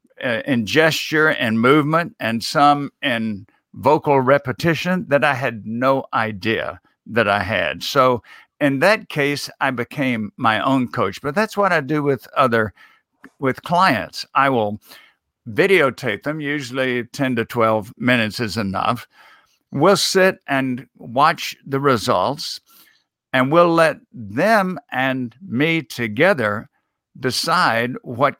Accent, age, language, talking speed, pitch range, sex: American, 60-79, English, 130 wpm, 115-145 Hz, male